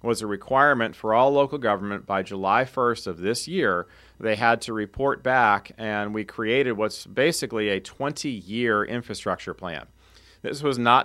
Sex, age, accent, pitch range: male, 40-59, American, 105-130 Hz